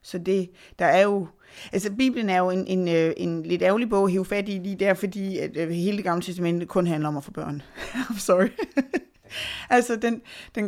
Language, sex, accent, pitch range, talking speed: Danish, female, native, 170-215 Hz, 210 wpm